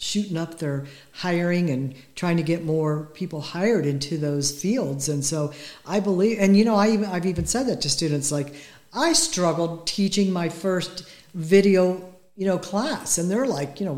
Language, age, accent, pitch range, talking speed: English, 60-79, American, 160-205 Hz, 190 wpm